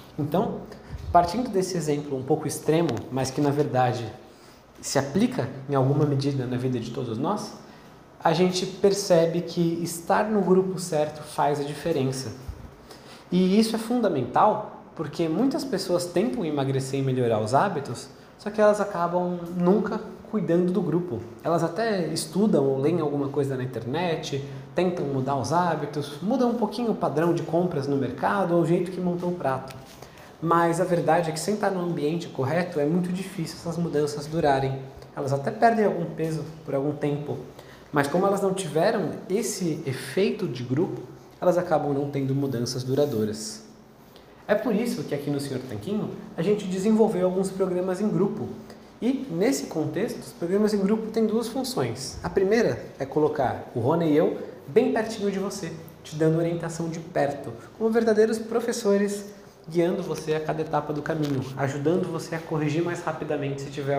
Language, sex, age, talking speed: Portuguese, male, 20-39, 170 wpm